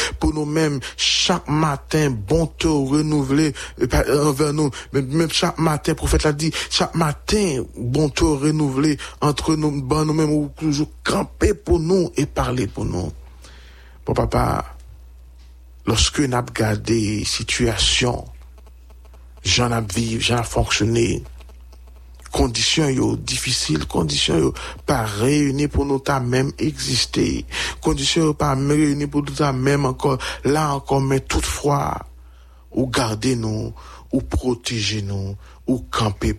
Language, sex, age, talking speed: English, male, 60-79, 125 wpm